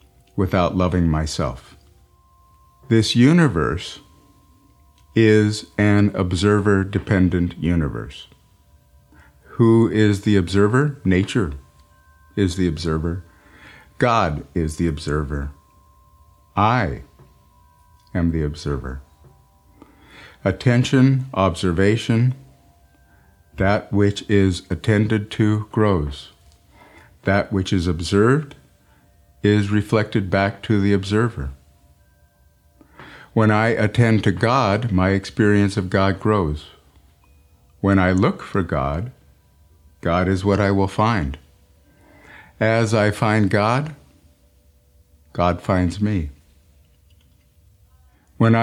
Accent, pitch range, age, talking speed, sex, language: American, 75-105 Hz, 50-69, 90 wpm, male, English